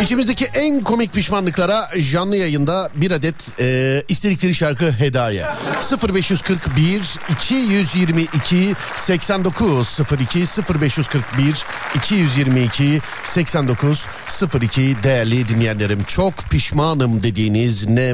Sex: male